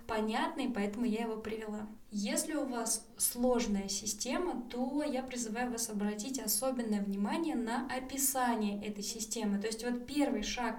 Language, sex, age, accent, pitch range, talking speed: Russian, female, 20-39, native, 215-265 Hz, 145 wpm